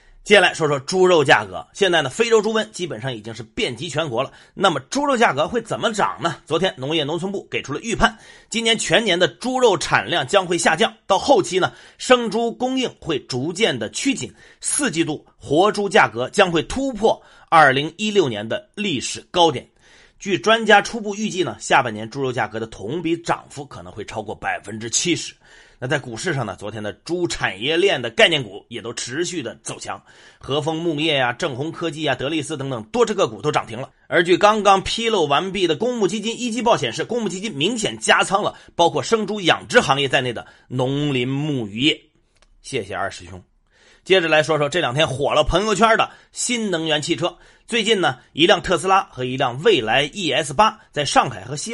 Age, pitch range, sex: 30-49, 140-215 Hz, male